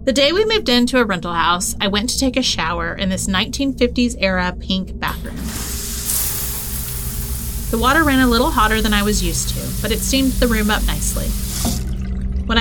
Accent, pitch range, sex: American, 185-240 Hz, female